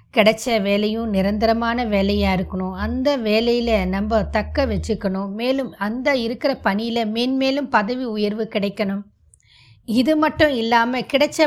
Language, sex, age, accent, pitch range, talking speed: Tamil, female, 20-39, native, 205-265 Hz, 115 wpm